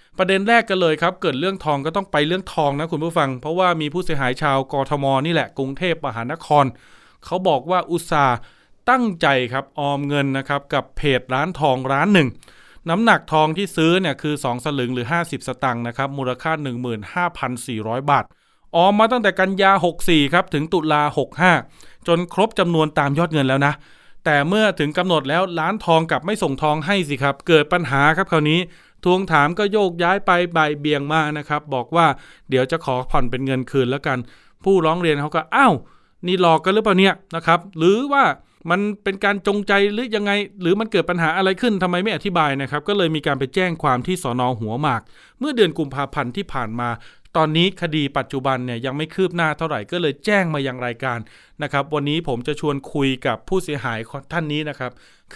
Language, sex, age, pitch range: Thai, male, 20-39, 140-180 Hz